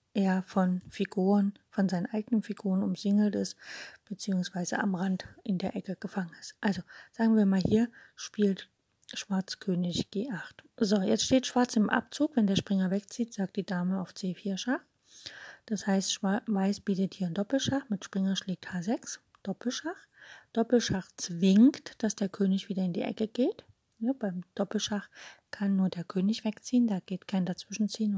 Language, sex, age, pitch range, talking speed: German, female, 30-49, 185-220 Hz, 160 wpm